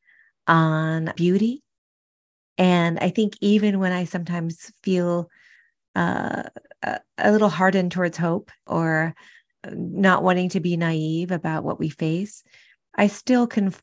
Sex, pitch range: female, 160-185 Hz